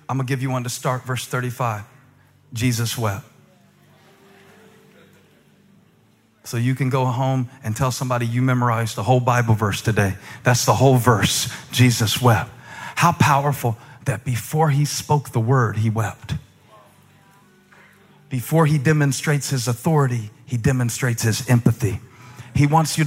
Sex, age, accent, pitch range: male, 40-59, American, 120-155 Hz